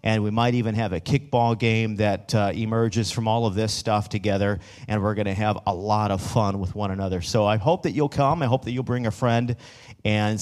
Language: English